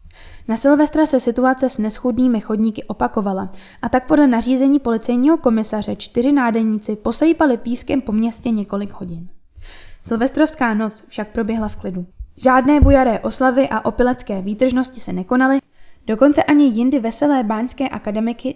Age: 10-29